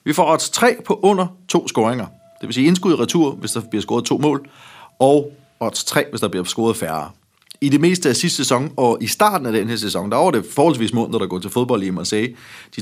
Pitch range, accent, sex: 110-145 Hz, native, male